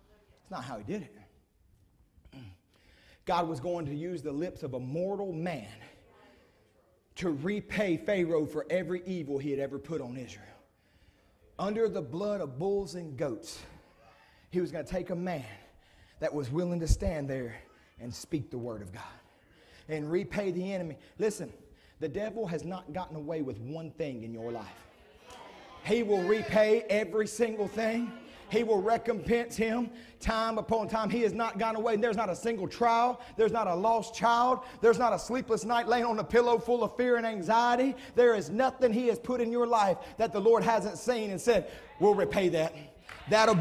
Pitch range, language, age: 160-235 Hz, English, 30-49